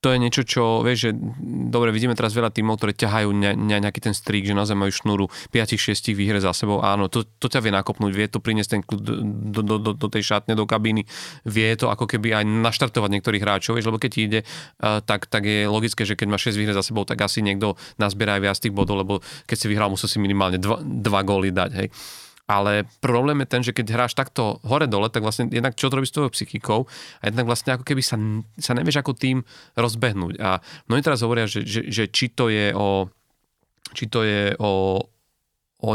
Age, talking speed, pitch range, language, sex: 30-49, 220 wpm, 100-120 Hz, Slovak, male